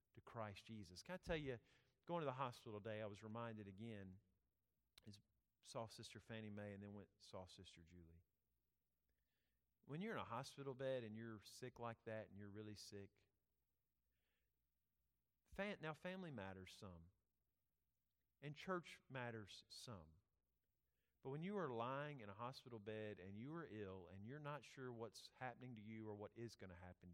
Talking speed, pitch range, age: 170 wpm, 100-140 Hz, 40-59